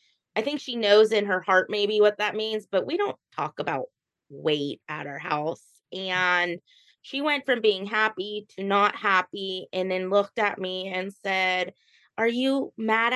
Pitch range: 185-235 Hz